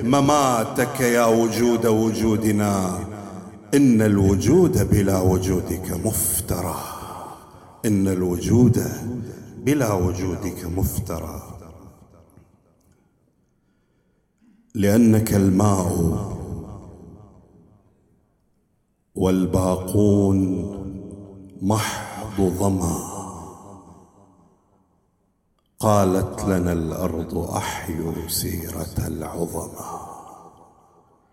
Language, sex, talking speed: English, male, 50 wpm